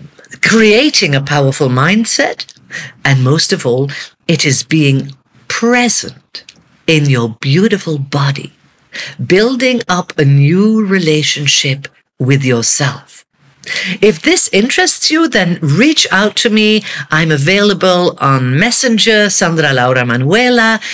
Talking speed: 110 wpm